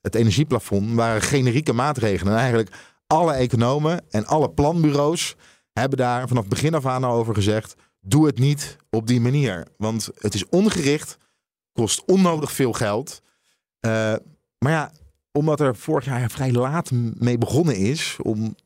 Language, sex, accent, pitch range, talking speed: Dutch, male, Dutch, 110-140 Hz, 160 wpm